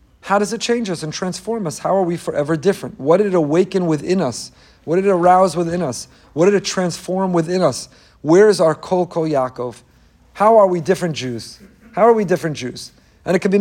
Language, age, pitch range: English, 40-59, 155-195 Hz